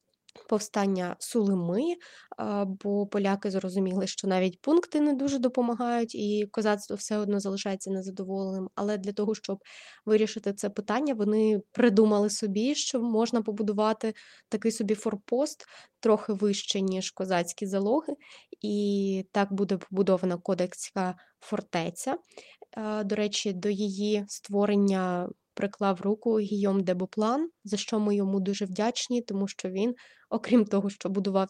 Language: Ukrainian